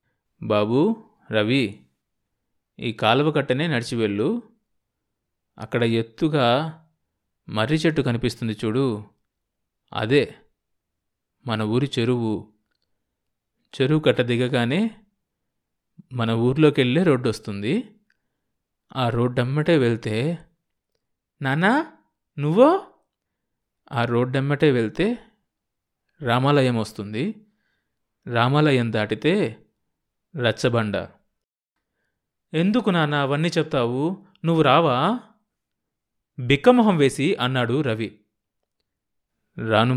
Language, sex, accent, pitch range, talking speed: Telugu, male, native, 115-160 Hz, 75 wpm